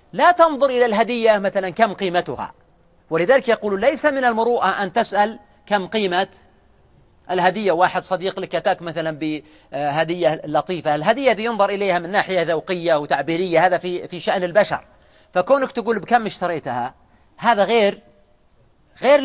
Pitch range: 170-220 Hz